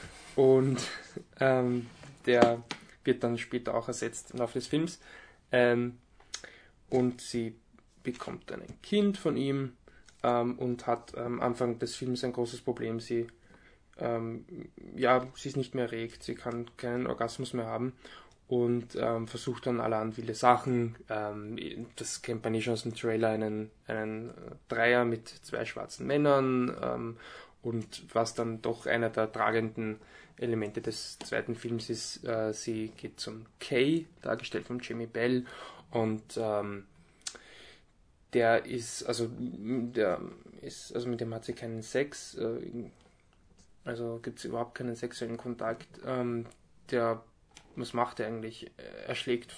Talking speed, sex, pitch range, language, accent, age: 145 wpm, male, 115-125 Hz, German, German, 20-39